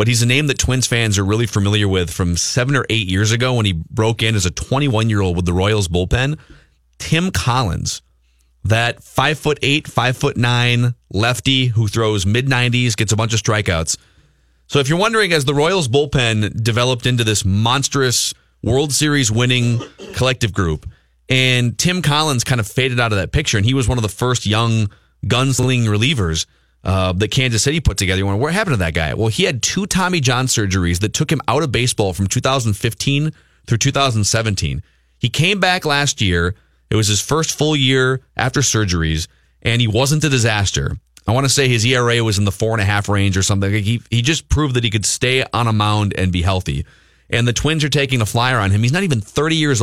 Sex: male